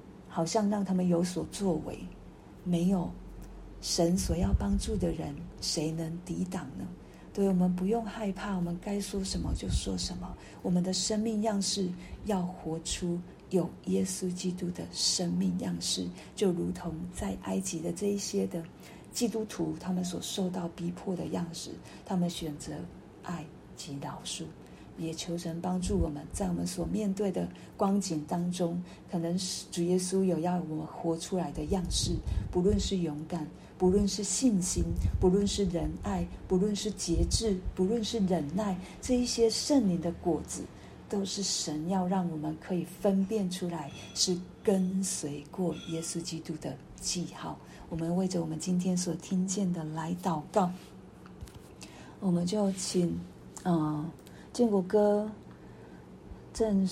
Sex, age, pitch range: female, 50-69, 165-195 Hz